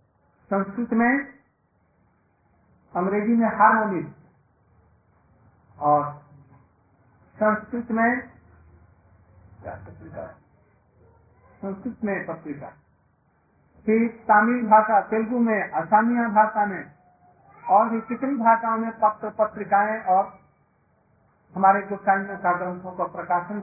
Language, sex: Hindi, male